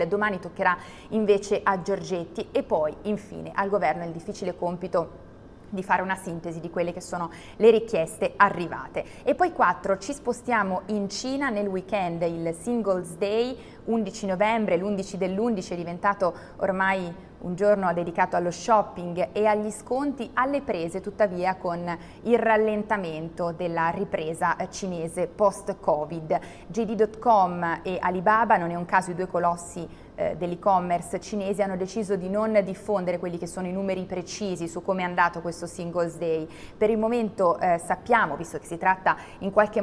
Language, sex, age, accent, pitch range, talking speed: Italian, female, 20-39, native, 175-210 Hz, 155 wpm